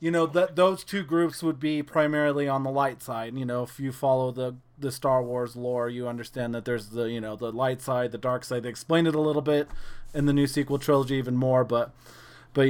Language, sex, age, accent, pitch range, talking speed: English, male, 30-49, American, 130-160 Hz, 240 wpm